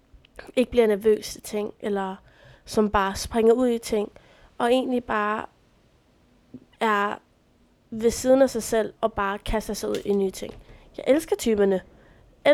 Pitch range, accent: 210-255 Hz, native